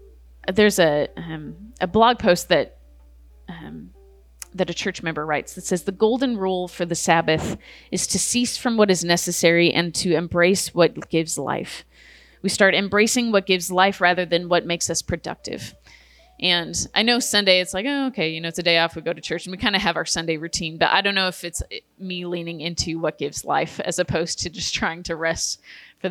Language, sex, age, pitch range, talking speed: English, female, 30-49, 165-195 Hz, 210 wpm